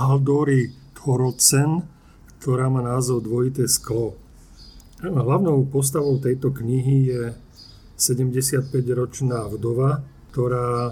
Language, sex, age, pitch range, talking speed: Slovak, male, 40-59, 120-130 Hz, 80 wpm